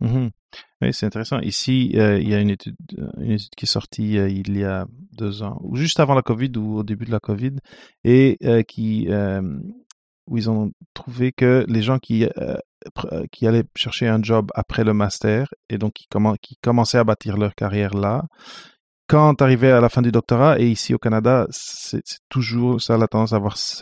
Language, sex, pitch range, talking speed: French, male, 105-130 Hz, 215 wpm